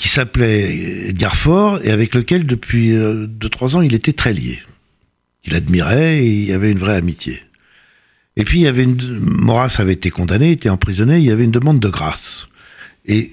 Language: French